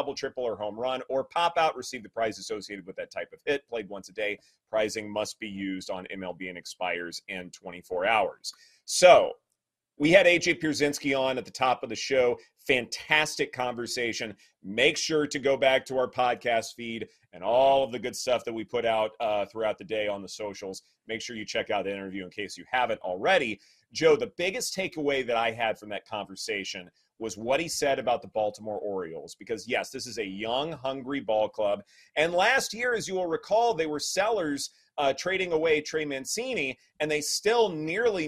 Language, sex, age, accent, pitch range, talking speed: English, male, 30-49, American, 115-170 Hz, 205 wpm